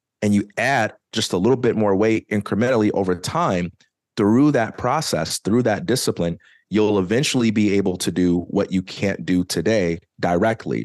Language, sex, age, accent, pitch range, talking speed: English, male, 30-49, American, 90-100 Hz, 165 wpm